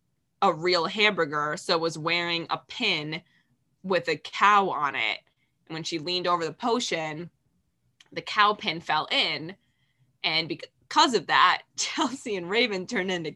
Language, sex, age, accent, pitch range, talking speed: English, female, 20-39, American, 165-210 Hz, 150 wpm